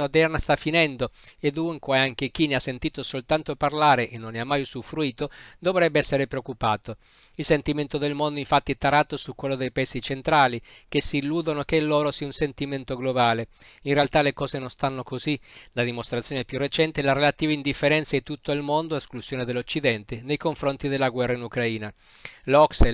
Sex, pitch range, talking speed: male, 130-155 Hz, 190 wpm